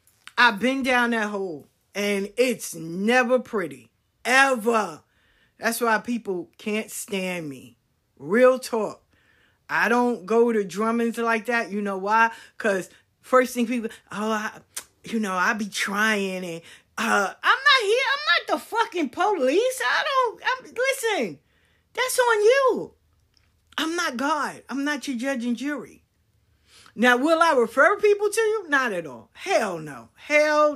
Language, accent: English, American